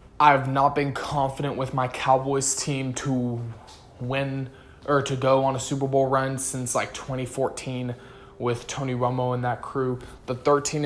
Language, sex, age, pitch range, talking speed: English, male, 20-39, 125-140 Hz, 160 wpm